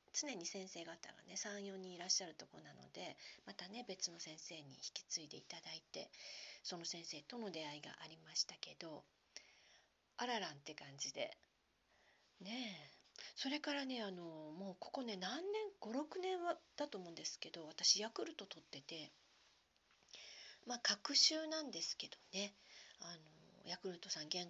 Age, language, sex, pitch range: 40-59, Japanese, female, 180-255 Hz